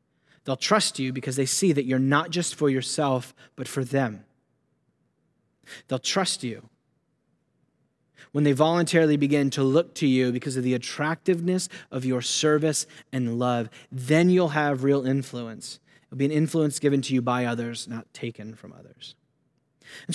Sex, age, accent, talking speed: male, 30-49, American, 160 wpm